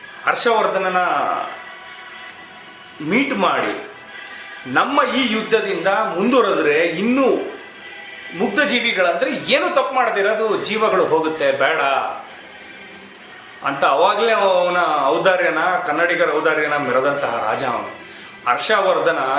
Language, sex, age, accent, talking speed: Kannada, male, 30-49, native, 75 wpm